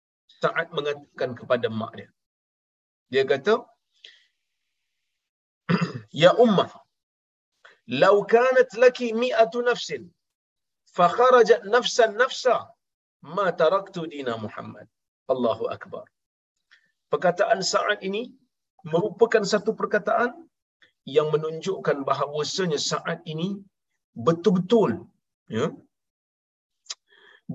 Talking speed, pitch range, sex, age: 80 wpm, 170-245 Hz, male, 50-69